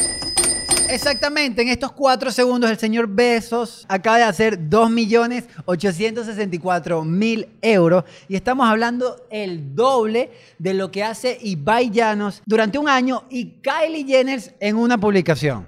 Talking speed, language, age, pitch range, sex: 125 wpm, Spanish, 30-49, 165-230 Hz, male